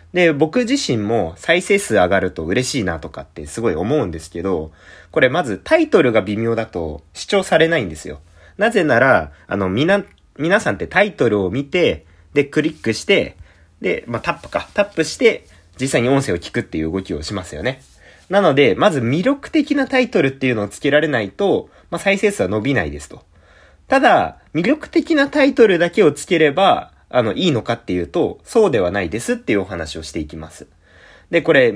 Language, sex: Japanese, male